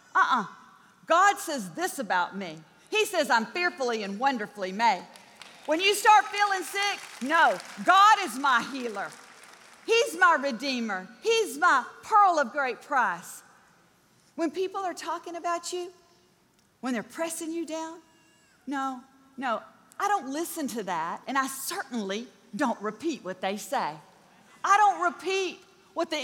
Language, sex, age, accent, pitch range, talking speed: English, female, 40-59, American, 245-360 Hz, 145 wpm